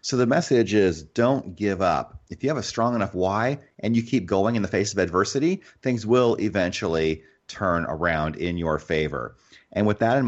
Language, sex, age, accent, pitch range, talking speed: English, male, 30-49, American, 85-105 Hz, 205 wpm